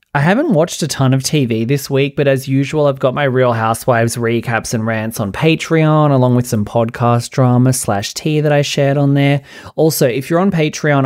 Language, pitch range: English, 115-145 Hz